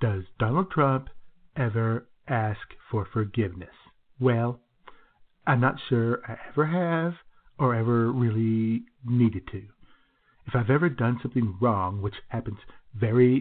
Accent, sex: American, male